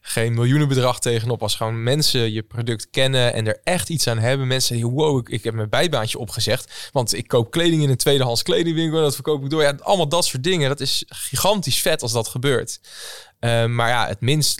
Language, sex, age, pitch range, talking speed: Dutch, male, 20-39, 110-135 Hz, 220 wpm